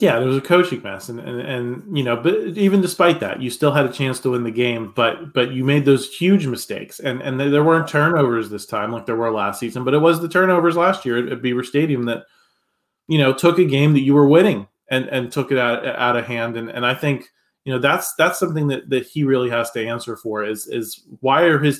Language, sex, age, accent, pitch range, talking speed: English, male, 20-39, American, 120-145 Hz, 255 wpm